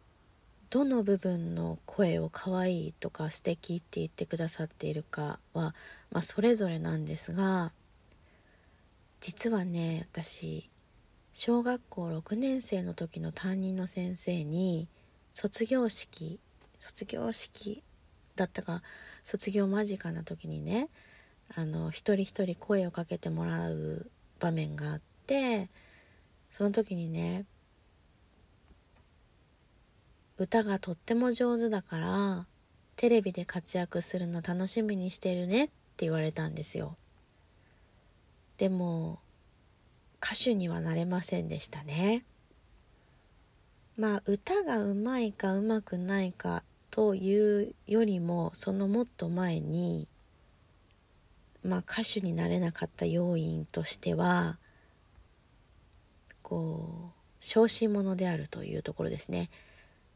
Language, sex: English, female